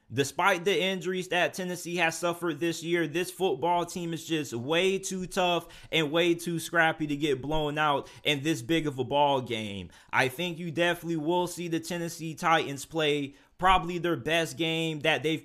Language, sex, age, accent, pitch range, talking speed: English, male, 20-39, American, 155-175 Hz, 185 wpm